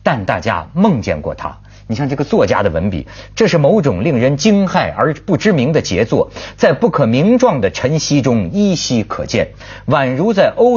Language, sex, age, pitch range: Chinese, male, 50-69, 100-165 Hz